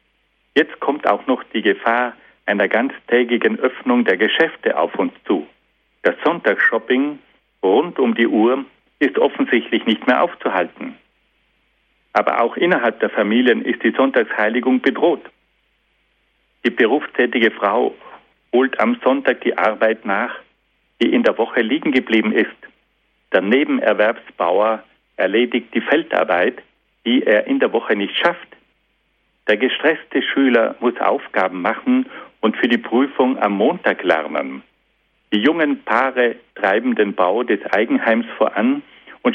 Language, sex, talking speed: German, male, 130 wpm